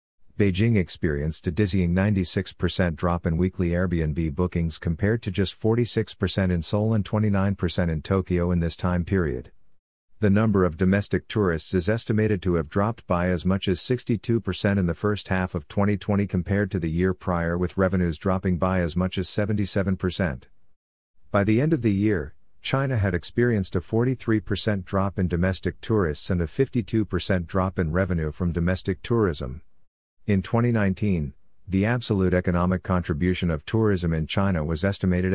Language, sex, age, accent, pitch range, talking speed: English, male, 50-69, American, 90-100 Hz, 160 wpm